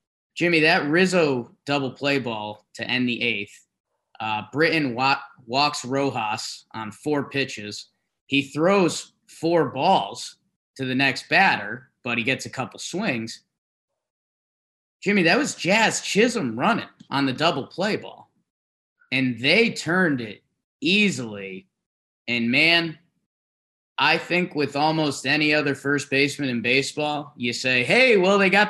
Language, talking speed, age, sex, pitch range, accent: English, 140 wpm, 20-39, male, 120-150 Hz, American